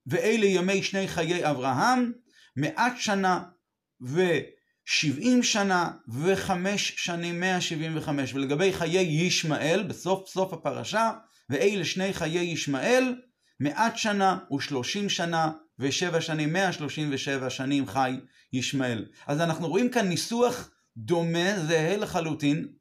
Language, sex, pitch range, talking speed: Hebrew, male, 160-200 Hz, 110 wpm